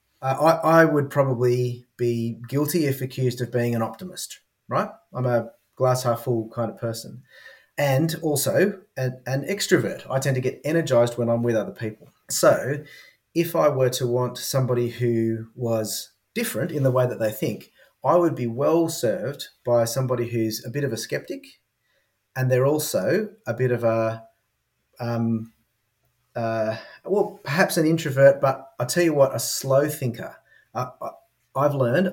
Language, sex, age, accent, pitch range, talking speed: English, male, 30-49, Australian, 115-145 Hz, 170 wpm